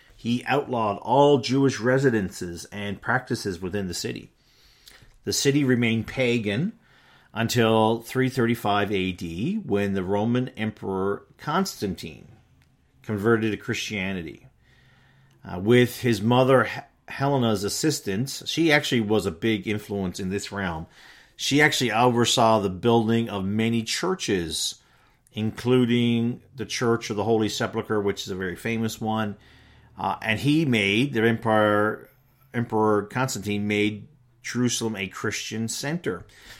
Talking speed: 120 wpm